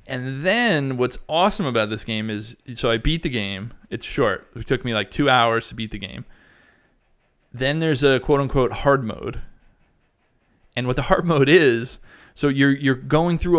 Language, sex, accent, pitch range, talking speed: English, male, American, 115-135 Hz, 190 wpm